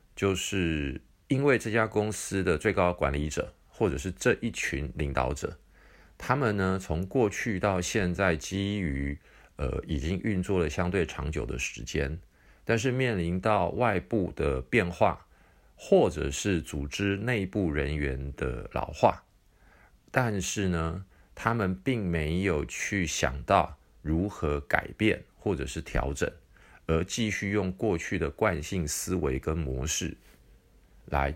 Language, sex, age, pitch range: Chinese, male, 50-69, 75-105 Hz